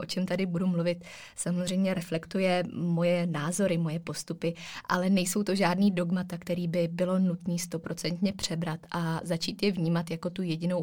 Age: 20-39